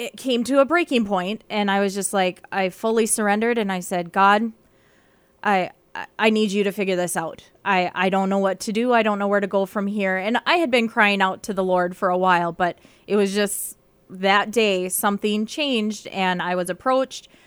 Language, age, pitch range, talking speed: English, 20-39, 185-220 Hz, 225 wpm